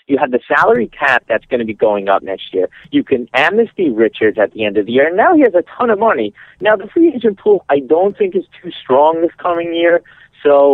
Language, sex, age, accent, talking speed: English, male, 40-59, American, 255 wpm